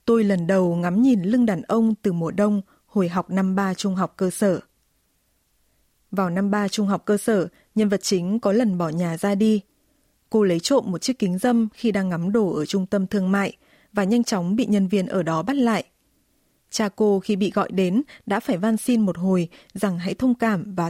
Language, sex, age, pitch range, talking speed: Vietnamese, female, 20-39, 185-220 Hz, 225 wpm